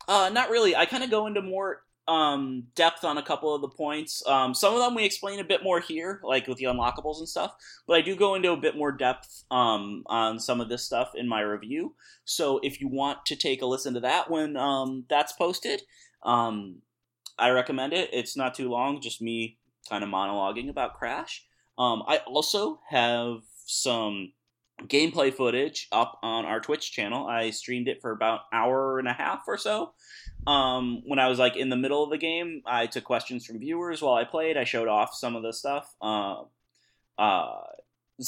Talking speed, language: 205 wpm, English